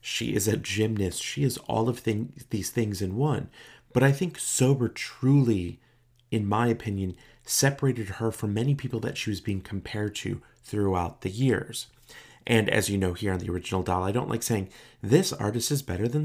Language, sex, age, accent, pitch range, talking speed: English, male, 30-49, American, 95-120 Hz, 190 wpm